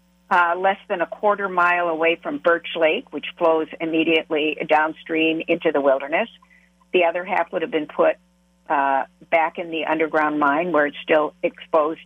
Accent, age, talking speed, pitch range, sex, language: American, 60-79, 170 wpm, 160-190 Hz, female, English